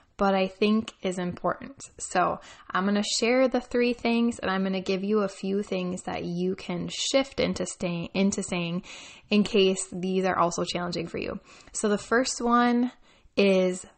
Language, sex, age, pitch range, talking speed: English, female, 10-29, 185-245 Hz, 185 wpm